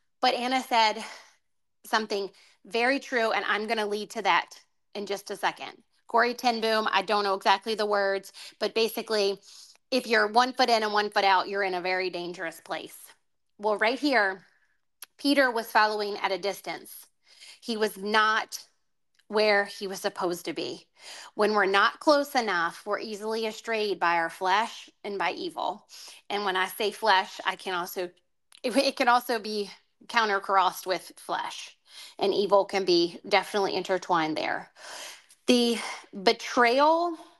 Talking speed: 160 wpm